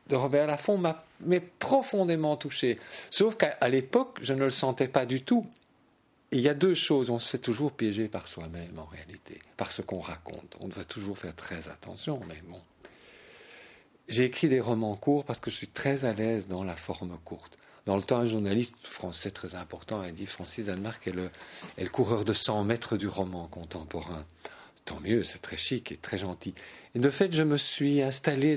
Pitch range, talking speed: 95-140 Hz, 205 wpm